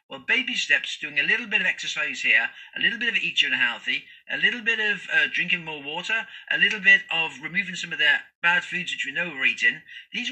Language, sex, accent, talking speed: English, male, British, 235 wpm